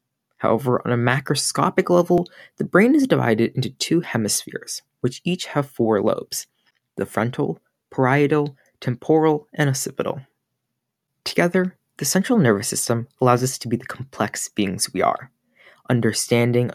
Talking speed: 135 wpm